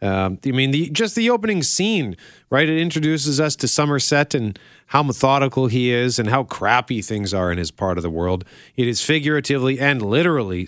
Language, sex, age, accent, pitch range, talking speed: English, male, 40-59, American, 100-140 Hz, 190 wpm